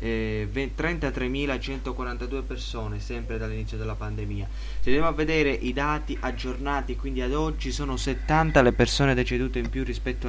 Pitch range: 110-135 Hz